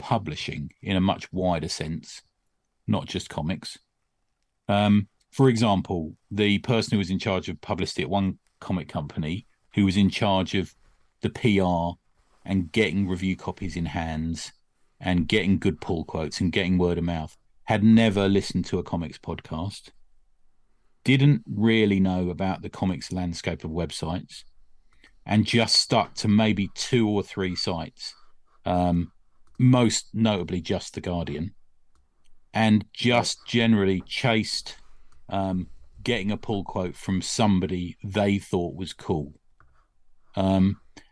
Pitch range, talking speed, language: 90-110 Hz, 135 wpm, English